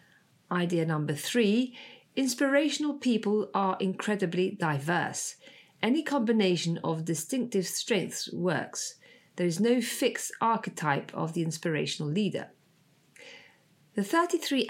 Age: 40-59